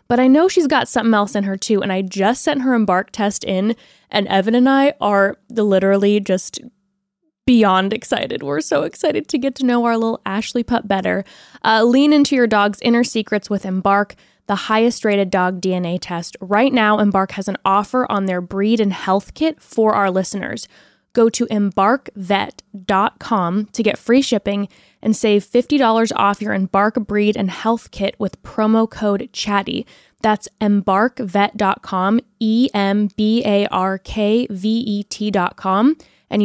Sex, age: female, 10-29